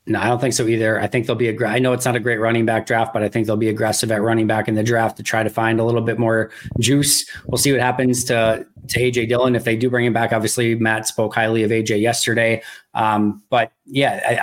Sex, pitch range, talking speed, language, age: male, 115-125 Hz, 275 wpm, English, 20-39